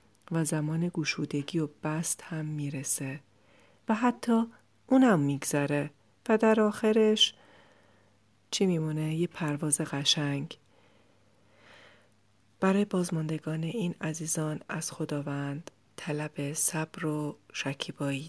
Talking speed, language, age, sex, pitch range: 95 wpm, Persian, 40-59, female, 140-165 Hz